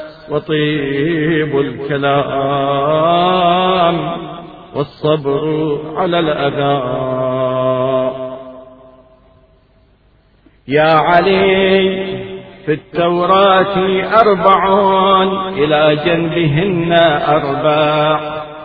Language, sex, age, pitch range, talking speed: Arabic, male, 50-69, 140-180 Hz, 40 wpm